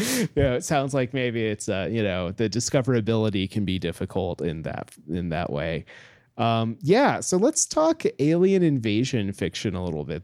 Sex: male